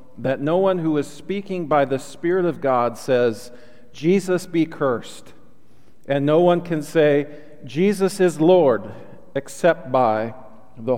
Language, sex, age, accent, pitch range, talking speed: English, male, 40-59, American, 120-150 Hz, 140 wpm